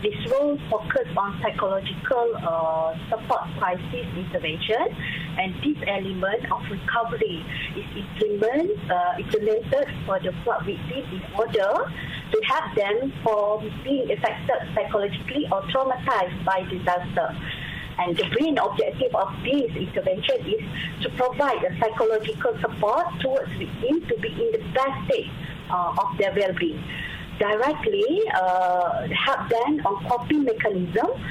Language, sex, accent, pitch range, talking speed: English, female, Malaysian, 180-275 Hz, 130 wpm